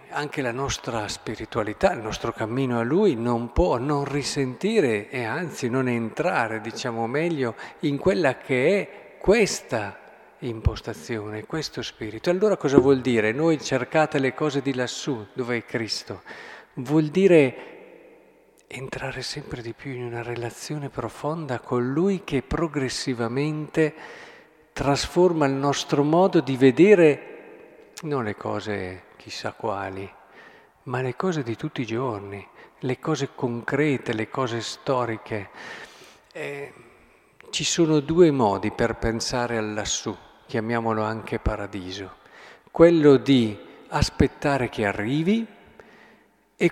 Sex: male